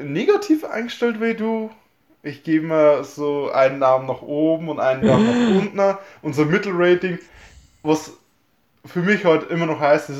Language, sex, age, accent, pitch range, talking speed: German, male, 20-39, German, 135-160 Hz, 165 wpm